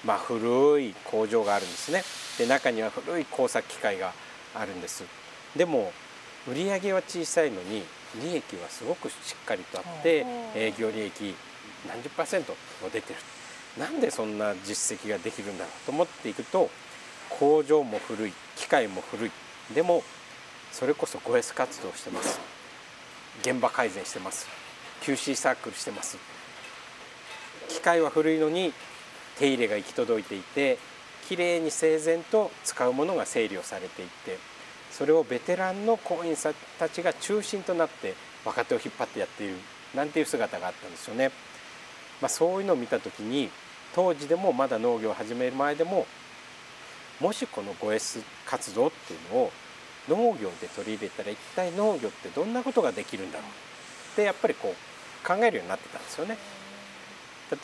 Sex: male